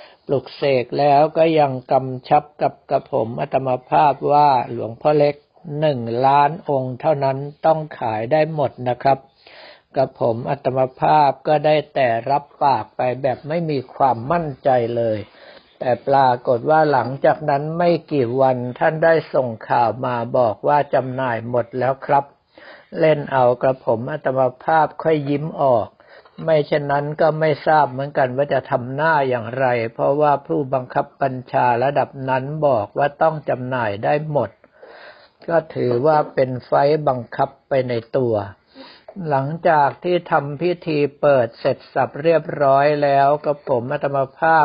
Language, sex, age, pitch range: Thai, male, 60-79, 130-155 Hz